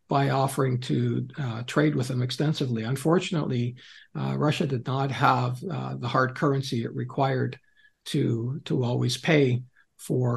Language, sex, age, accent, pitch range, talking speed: English, male, 60-79, American, 125-150 Hz, 145 wpm